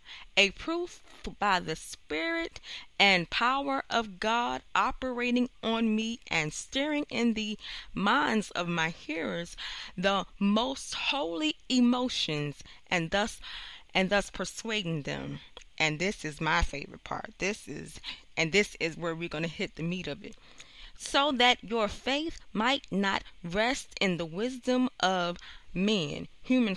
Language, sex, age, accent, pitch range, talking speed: English, female, 20-39, American, 170-230 Hz, 140 wpm